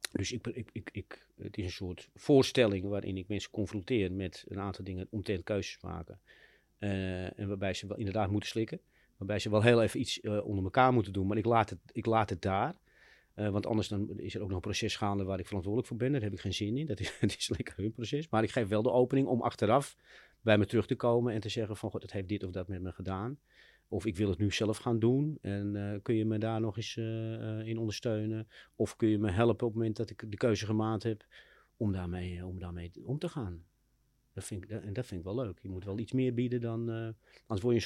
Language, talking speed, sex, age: Dutch, 265 wpm, male, 40-59